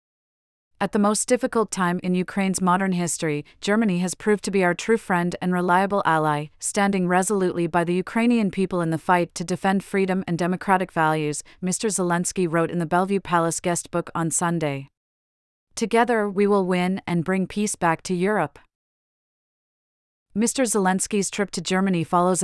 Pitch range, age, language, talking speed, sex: 170-195 Hz, 30-49, English, 165 wpm, female